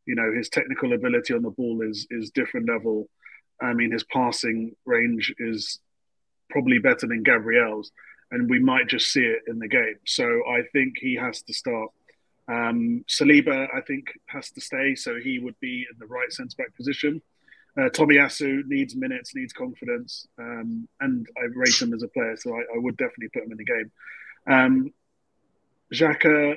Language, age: English, 30-49